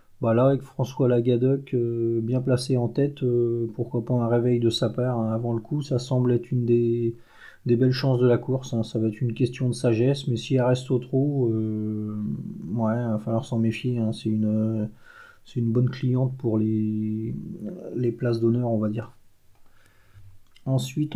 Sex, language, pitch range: male, French, 115-135 Hz